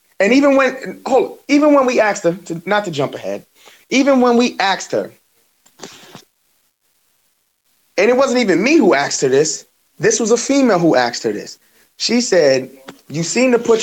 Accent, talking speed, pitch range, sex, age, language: American, 180 wpm, 160-230 Hz, male, 30-49, English